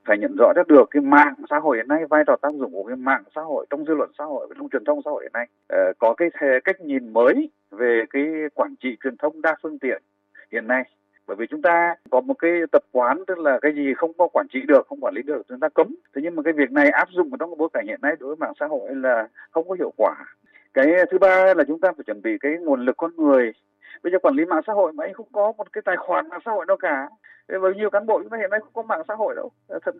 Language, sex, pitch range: Vietnamese, male, 130-190 Hz